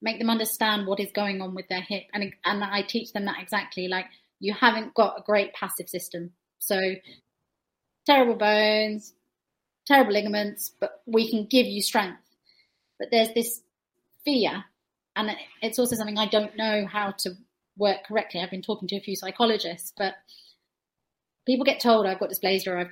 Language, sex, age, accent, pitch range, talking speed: English, female, 30-49, British, 190-225 Hz, 175 wpm